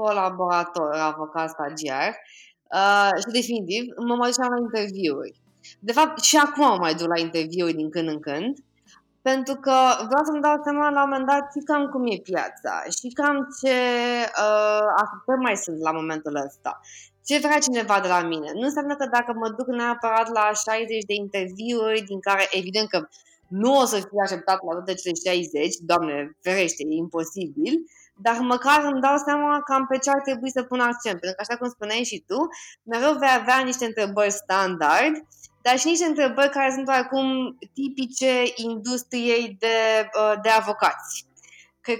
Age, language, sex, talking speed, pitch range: 20-39, Romanian, female, 175 wpm, 195-260 Hz